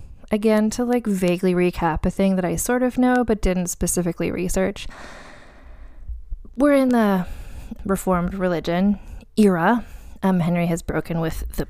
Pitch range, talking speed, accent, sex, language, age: 165-210 Hz, 145 wpm, American, female, English, 20-39